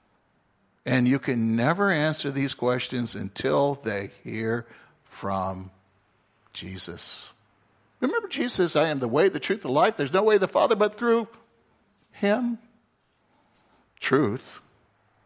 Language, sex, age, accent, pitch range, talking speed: English, male, 60-79, American, 105-170 Hz, 120 wpm